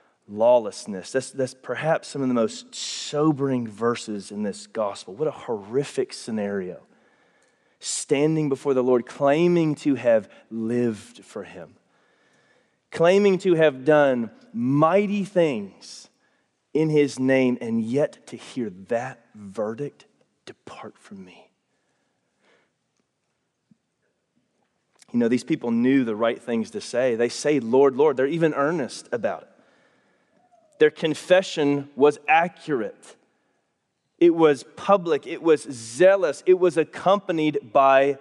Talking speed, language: 120 wpm, English